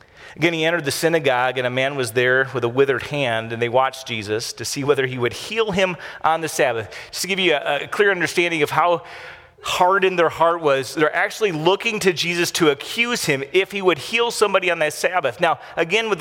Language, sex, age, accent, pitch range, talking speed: English, male, 40-59, American, 130-185 Hz, 230 wpm